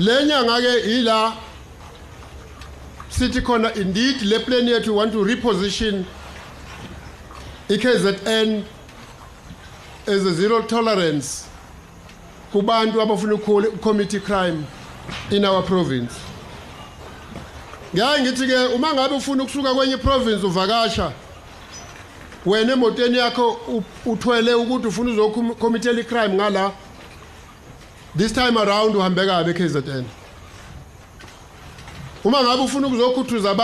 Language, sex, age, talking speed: English, male, 50-69, 55 wpm